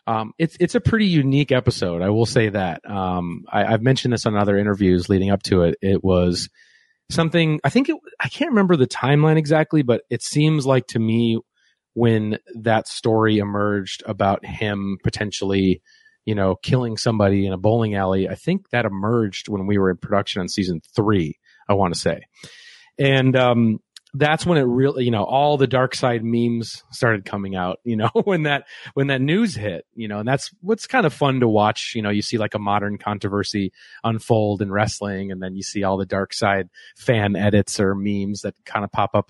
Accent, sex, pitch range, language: American, male, 100-135 Hz, English